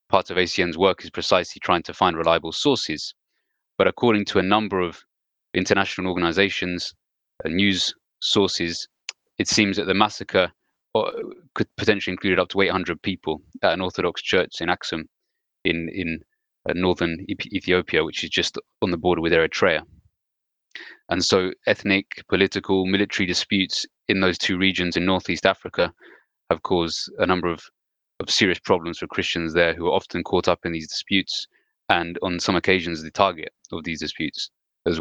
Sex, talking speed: male, 160 wpm